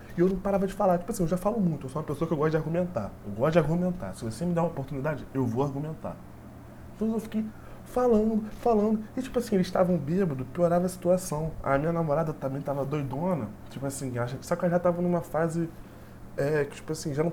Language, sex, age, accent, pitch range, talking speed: Portuguese, male, 20-39, Brazilian, 130-185 Hz, 235 wpm